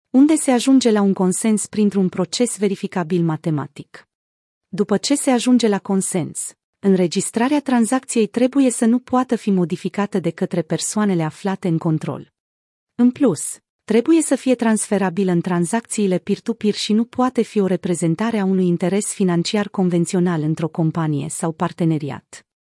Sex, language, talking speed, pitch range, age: female, Romanian, 145 wpm, 180-230 Hz, 30-49